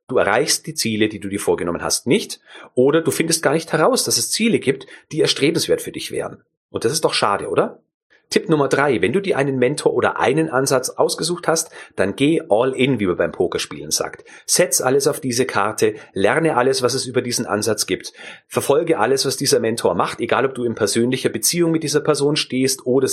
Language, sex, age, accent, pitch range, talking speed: German, male, 30-49, German, 115-140 Hz, 215 wpm